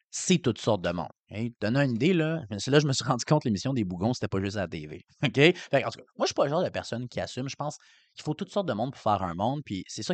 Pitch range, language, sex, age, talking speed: 100-145 Hz, French, male, 30-49, 345 wpm